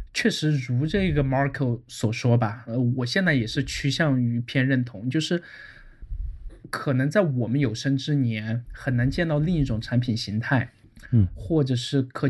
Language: Chinese